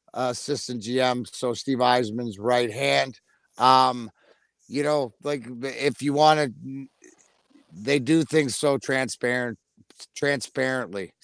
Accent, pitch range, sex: American, 120-145 Hz, male